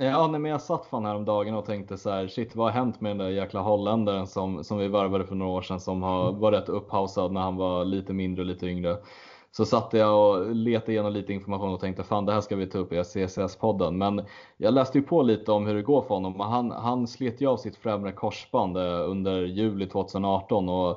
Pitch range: 95-110 Hz